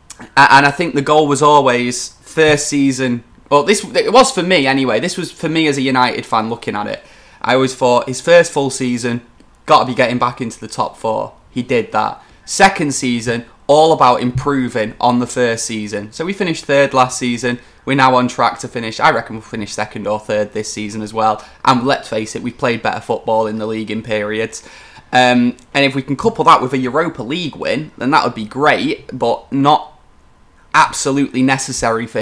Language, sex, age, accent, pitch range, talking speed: English, male, 20-39, British, 115-140 Hz, 210 wpm